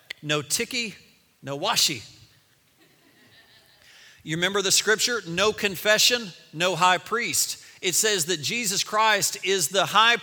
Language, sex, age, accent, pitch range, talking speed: Italian, male, 40-59, American, 155-220 Hz, 125 wpm